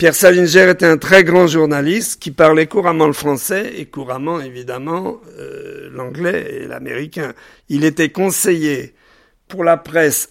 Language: French